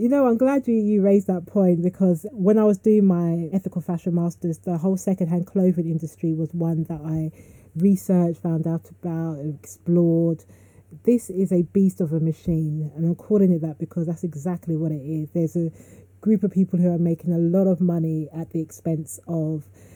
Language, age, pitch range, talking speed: English, 30-49, 170-200 Hz, 200 wpm